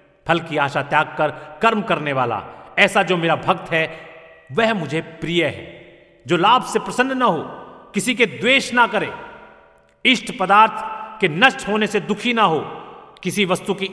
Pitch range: 155-220 Hz